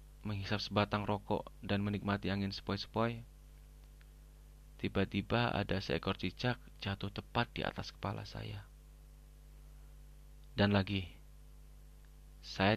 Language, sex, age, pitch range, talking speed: Indonesian, male, 20-39, 95-105 Hz, 95 wpm